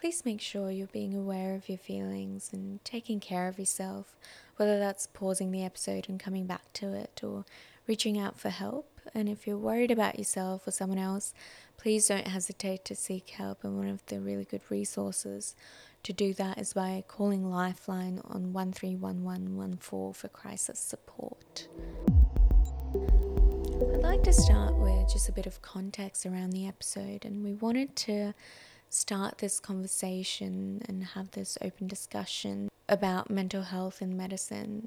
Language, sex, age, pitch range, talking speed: English, female, 20-39, 120-200 Hz, 160 wpm